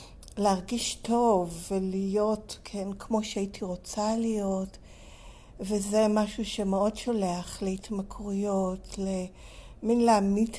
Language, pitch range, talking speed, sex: Hebrew, 190-220 Hz, 85 wpm, female